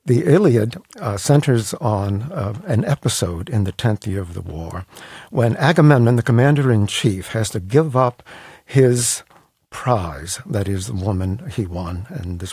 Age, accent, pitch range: 60-79, American, 100-125 Hz